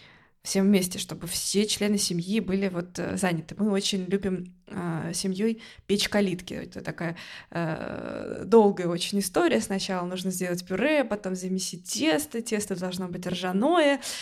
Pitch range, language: 185-220 Hz, Russian